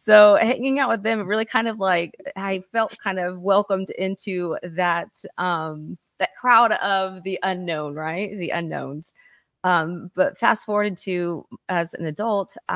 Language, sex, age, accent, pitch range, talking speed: English, female, 30-49, American, 170-215 Hz, 155 wpm